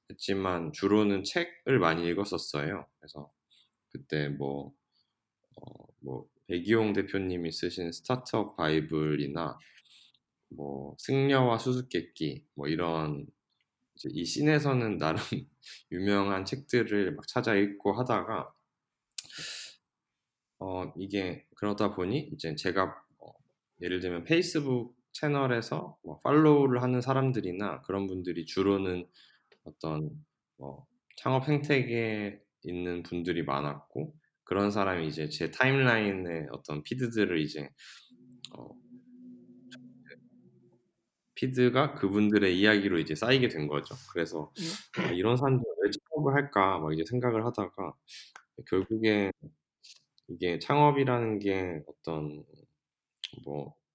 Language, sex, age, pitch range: Korean, male, 20-39, 85-125 Hz